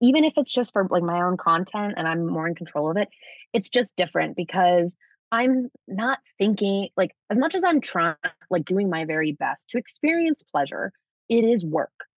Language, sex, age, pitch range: English, female, 20-39, 170-235 Hz